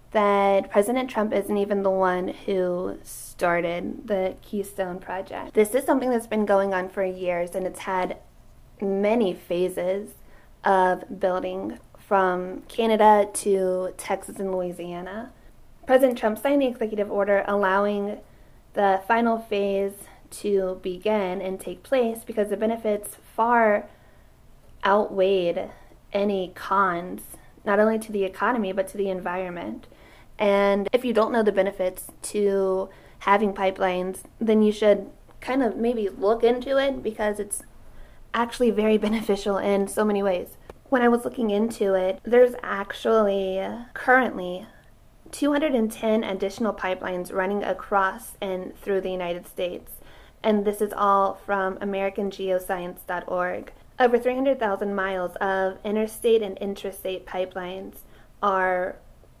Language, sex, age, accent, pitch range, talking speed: English, female, 20-39, American, 185-215 Hz, 130 wpm